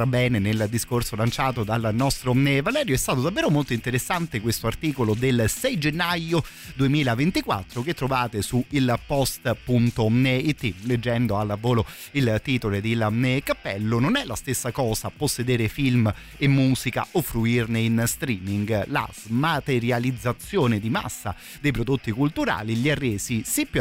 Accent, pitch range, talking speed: native, 110-135 Hz, 140 wpm